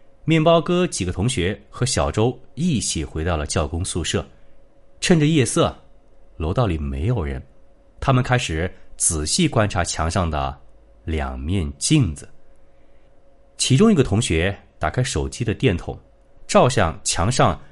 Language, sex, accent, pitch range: Chinese, male, native, 85-140 Hz